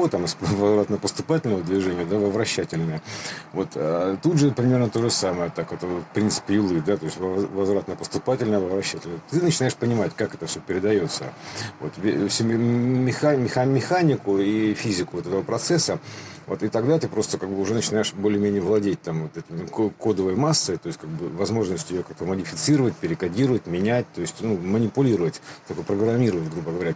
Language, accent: Russian, native